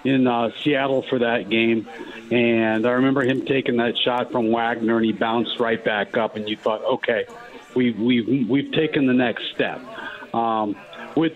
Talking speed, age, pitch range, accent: 180 wpm, 50-69, 115-150 Hz, American